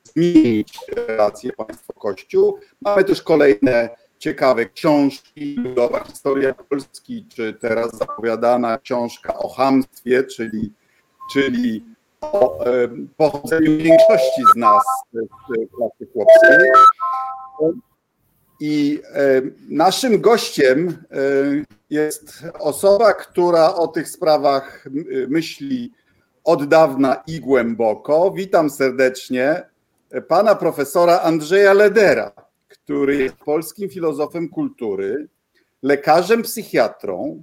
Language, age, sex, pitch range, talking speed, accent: Polish, 50-69, male, 135-230 Hz, 90 wpm, native